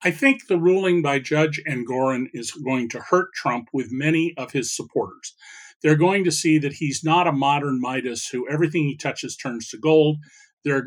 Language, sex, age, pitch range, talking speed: English, male, 40-59, 140-175 Hz, 195 wpm